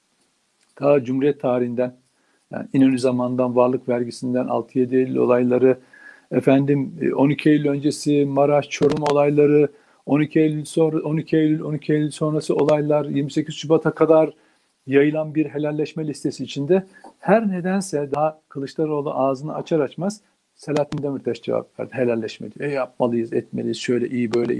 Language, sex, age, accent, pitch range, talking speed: Turkish, male, 50-69, native, 130-160 Hz, 125 wpm